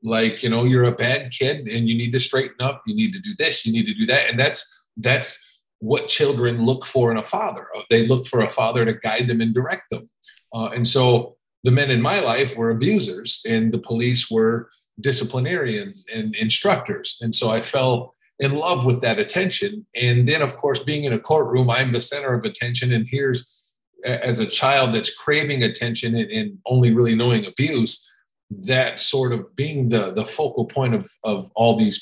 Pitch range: 115-140 Hz